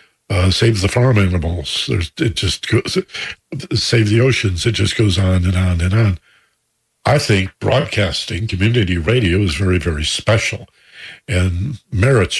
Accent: American